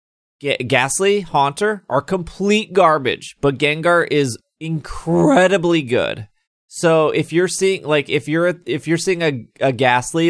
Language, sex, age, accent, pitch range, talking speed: English, male, 20-39, American, 125-175 Hz, 145 wpm